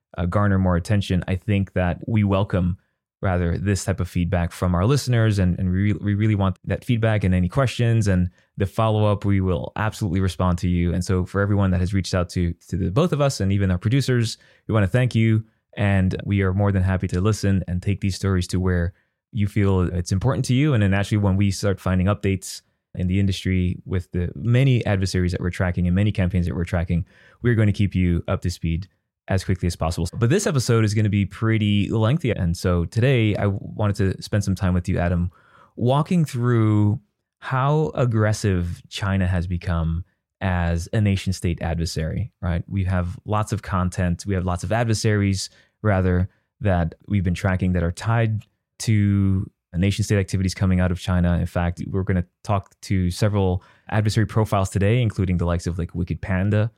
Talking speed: 205 wpm